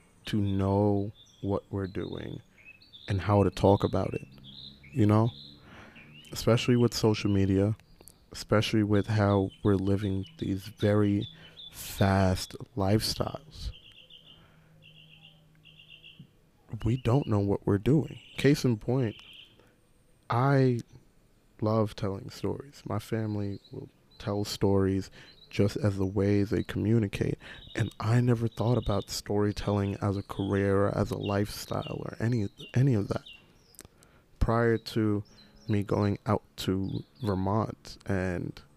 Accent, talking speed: American, 120 wpm